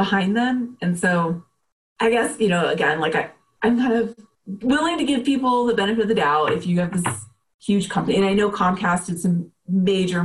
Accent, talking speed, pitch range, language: American, 205 wpm, 170-230 Hz, English